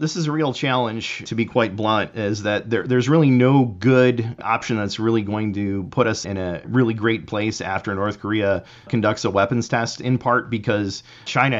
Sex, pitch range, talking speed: male, 100-115 Hz, 200 wpm